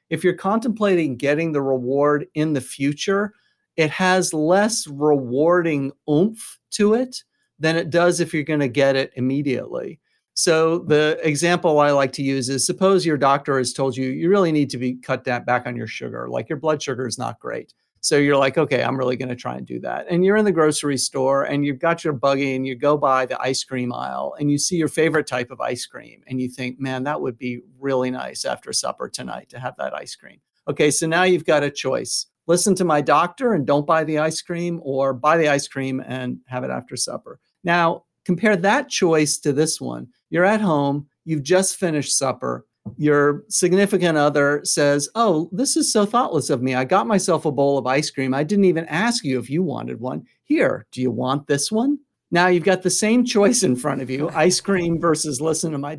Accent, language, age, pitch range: American, English, 50-69, 135-175 Hz